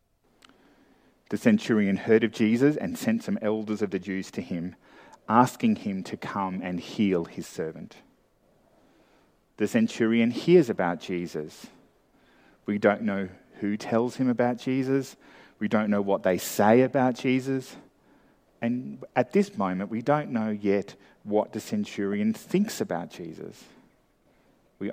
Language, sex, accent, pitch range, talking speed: English, male, Australian, 95-135 Hz, 140 wpm